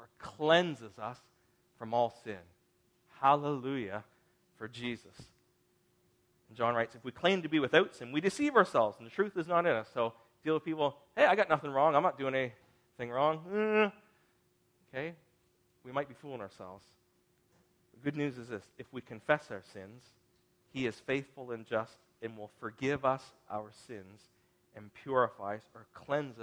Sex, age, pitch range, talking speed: male, 40-59, 115-145 Hz, 165 wpm